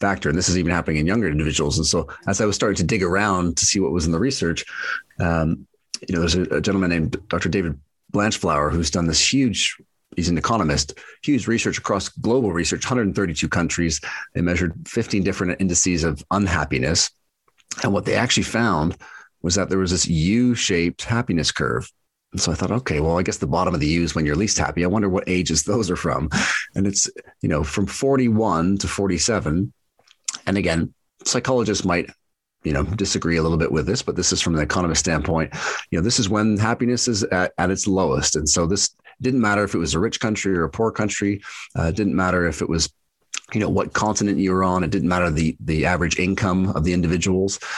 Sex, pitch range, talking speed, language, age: male, 85-100 Hz, 215 wpm, English, 40-59